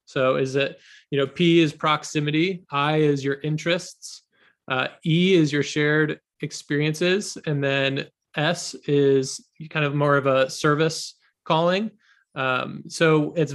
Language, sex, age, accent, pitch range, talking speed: English, male, 20-39, American, 135-155 Hz, 140 wpm